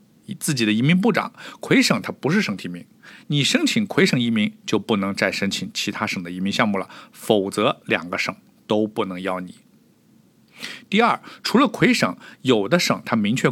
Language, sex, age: Chinese, male, 50-69